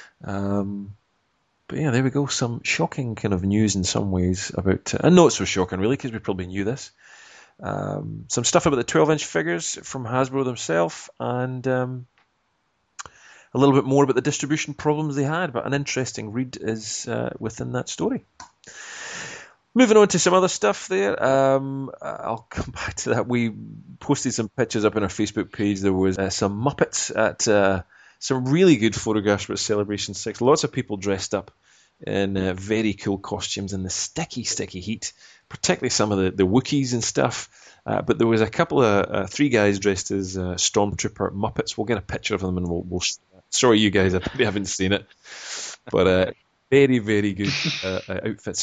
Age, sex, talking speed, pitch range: 30-49, male, 195 wpm, 100-140 Hz